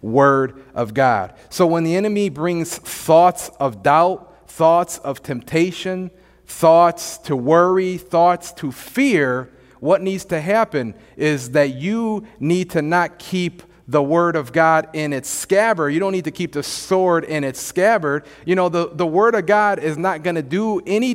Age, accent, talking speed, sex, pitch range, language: 40-59, American, 175 wpm, male, 160-210 Hz, English